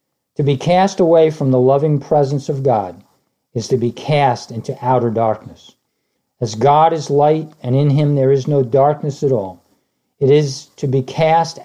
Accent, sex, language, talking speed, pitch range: American, male, English, 180 wpm, 120-155 Hz